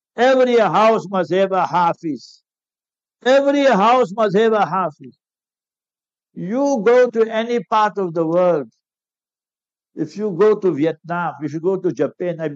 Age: 60-79